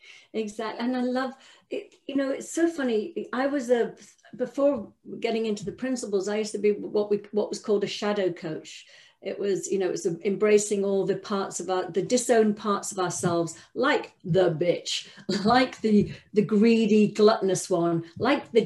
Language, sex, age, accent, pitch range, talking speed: English, female, 50-69, British, 185-250 Hz, 185 wpm